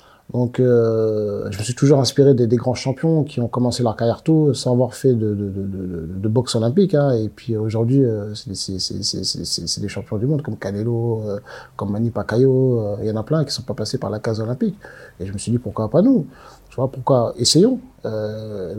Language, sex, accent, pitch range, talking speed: French, male, French, 110-135 Hz, 245 wpm